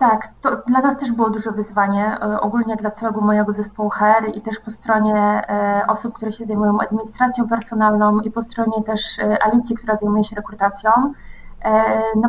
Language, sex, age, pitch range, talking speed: Polish, female, 20-39, 215-235 Hz, 165 wpm